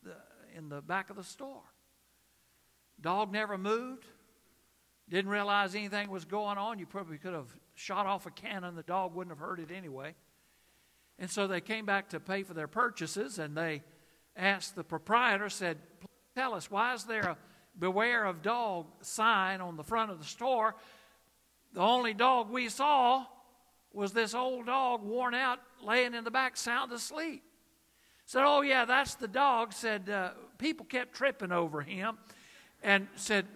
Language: English